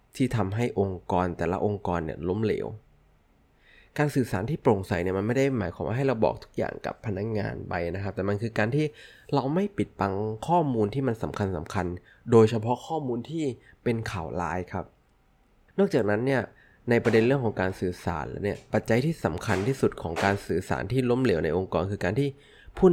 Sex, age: male, 20-39